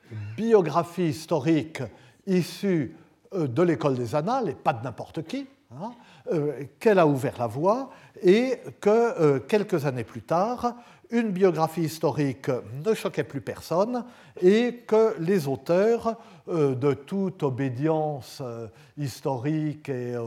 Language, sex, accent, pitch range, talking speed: French, male, French, 140-190 Hz, 120 wpm